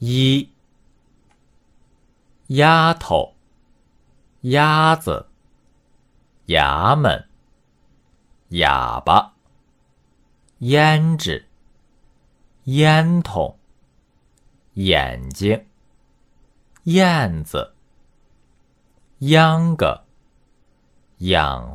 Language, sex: Chinese, male